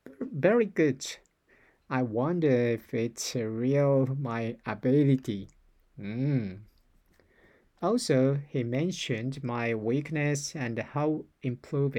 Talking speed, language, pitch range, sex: 90 wpm, English, 120-160 Hz, male